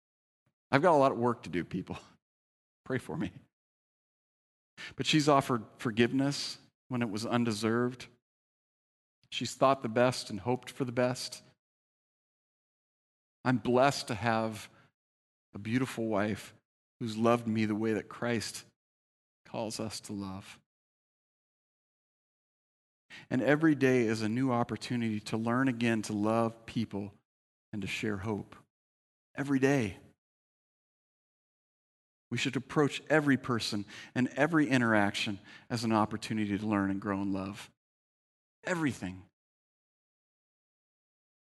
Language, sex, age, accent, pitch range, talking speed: English, male, 40-59, American, 105-130 Hz, 120 wpm